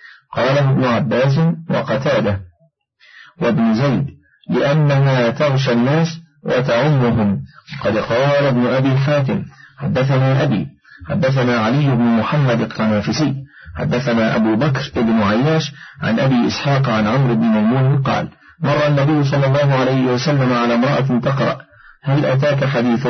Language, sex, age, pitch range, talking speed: Arabic, male, 40-59, 120-150 Hz, 120 wpm